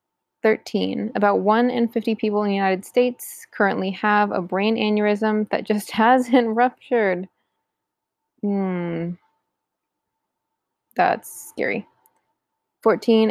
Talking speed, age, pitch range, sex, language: 105 wpm, 20-39, 190-235 Hz, female, English